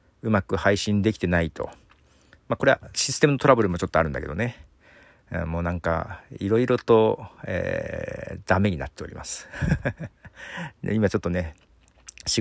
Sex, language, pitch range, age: male, Japanese, 85-130 Hz, 40-59